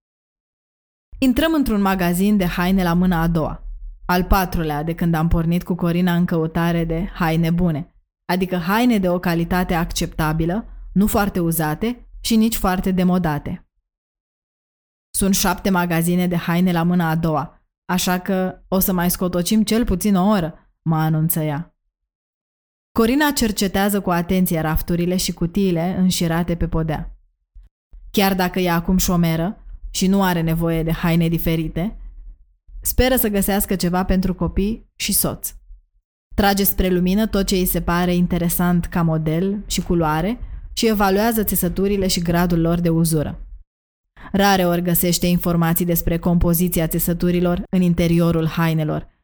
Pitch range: 165-195 Hz